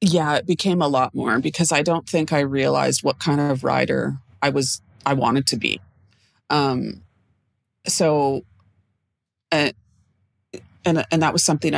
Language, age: English, 30-49